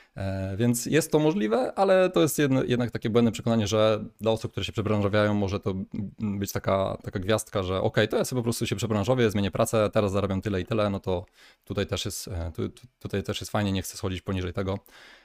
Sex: male